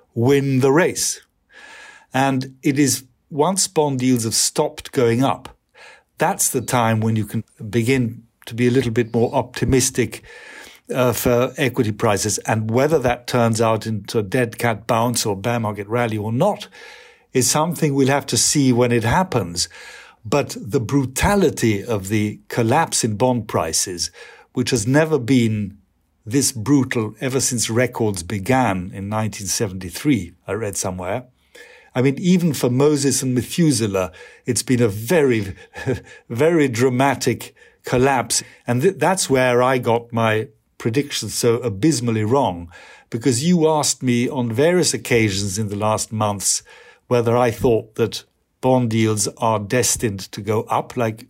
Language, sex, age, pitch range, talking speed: English, male, 60-79, 110-135 Hz, 150 wpm